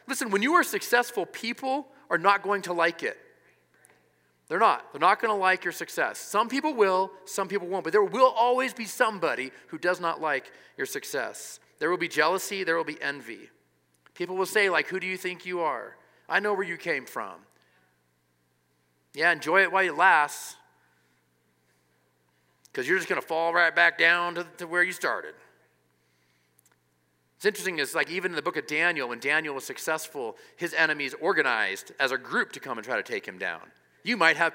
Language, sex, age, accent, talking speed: English, male, 40-59, American, 200 wpm